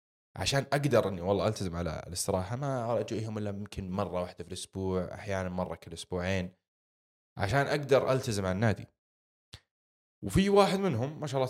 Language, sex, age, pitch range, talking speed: Arabic, male, 20-39, 95-125 Hz, 155 wpm